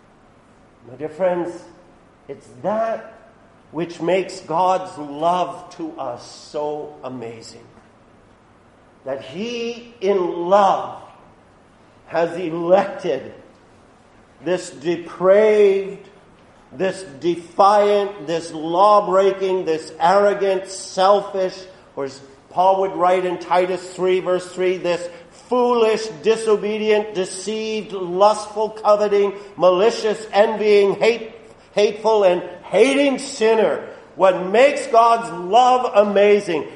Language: English